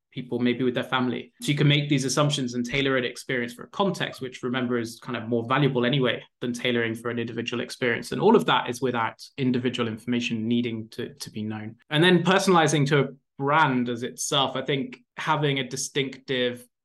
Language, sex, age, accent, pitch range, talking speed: English, male, 20-39, British, 120-140 Hz, 205 wpm